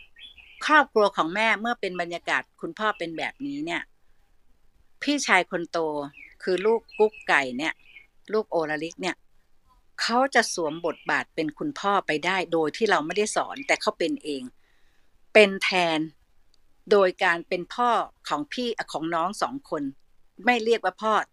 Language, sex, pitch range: Thai, female, 170-230 Hz